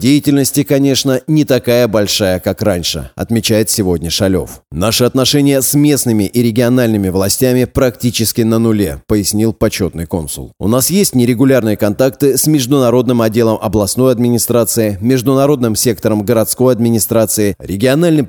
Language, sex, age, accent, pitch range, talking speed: Russian, male, 30-49, native, 105-135 Hz, 125 wpm